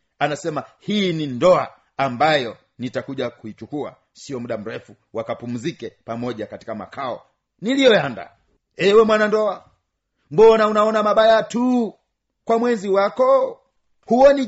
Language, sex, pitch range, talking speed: Swahili, male, 145-215 Hz, 105 wpm